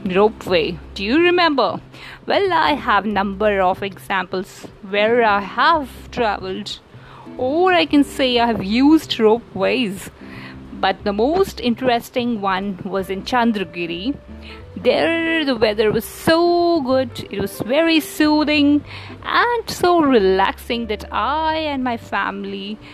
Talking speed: 130 wpm